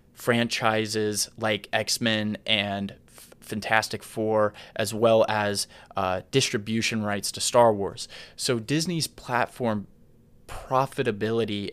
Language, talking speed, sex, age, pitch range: English, 95 wpm, male, 20-39, 105-125 Hz